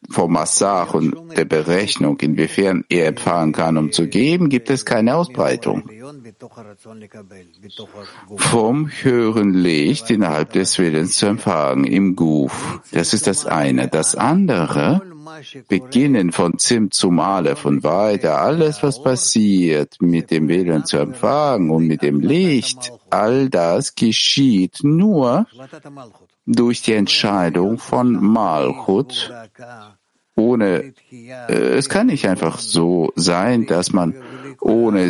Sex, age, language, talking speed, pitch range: male, 60-79, English, 120 wpm, 85-120 Hz